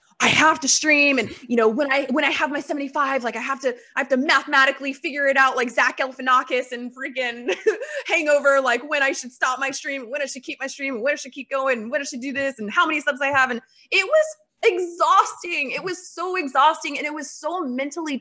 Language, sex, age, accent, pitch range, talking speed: English, female, 20-39, American, 245-315 Hz, 240 wpm